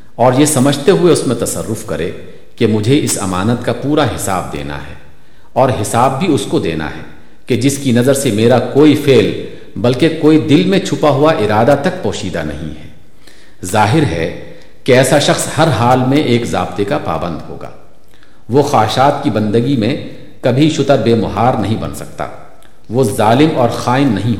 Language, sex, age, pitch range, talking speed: Urdu, male, 50-69, 95-140 Hz, 180 wpm